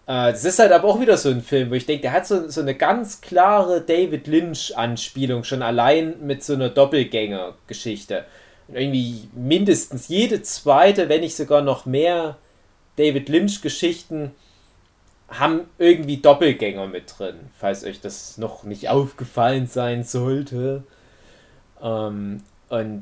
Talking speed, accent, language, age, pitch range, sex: 135 wpm, German, German, 20-39, 115-165 Hz, male